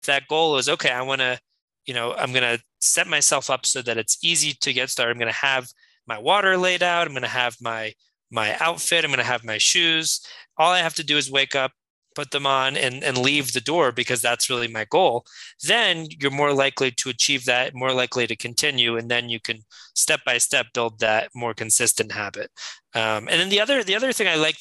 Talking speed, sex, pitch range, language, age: 235 wpm, male, 115-140 Hz, English, 20-39